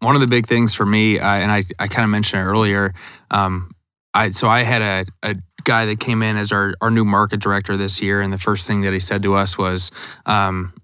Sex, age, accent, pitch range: male, 20-39, American, 100-115 Hz